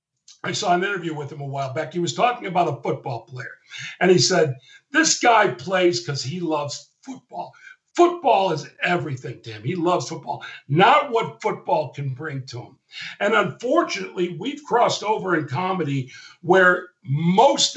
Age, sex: 50-69, male